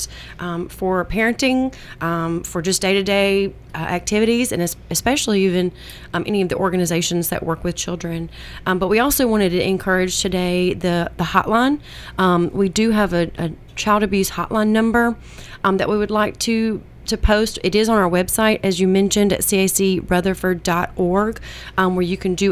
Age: 30-49